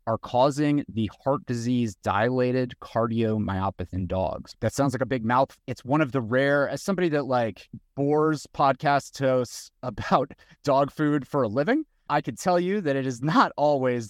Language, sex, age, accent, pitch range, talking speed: English, male, 30-49, American, 110-140 Hz, 180 wpm